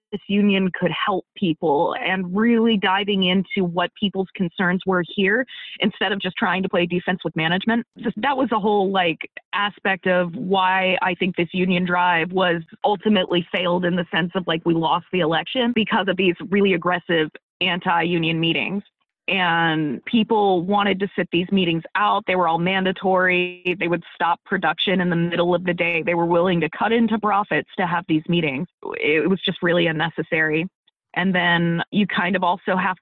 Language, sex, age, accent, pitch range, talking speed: English, female, 20-39, American, 175-205 Hz, 180 wpm